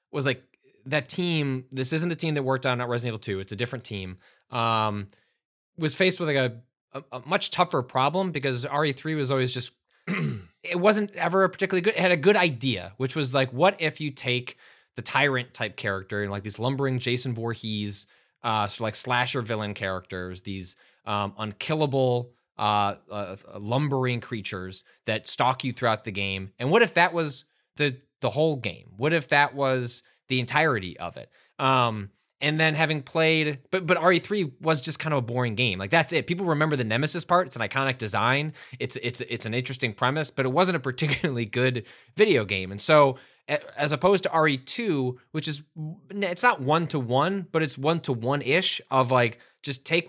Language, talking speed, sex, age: English, 190 wpm, male, 20-39